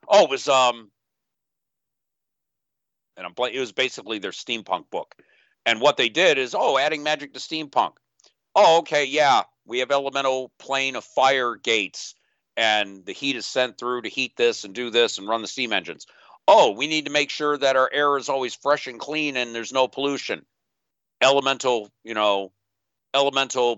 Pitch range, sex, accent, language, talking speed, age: 100-135 Hz, male, American, English, 180 wpm, 50-69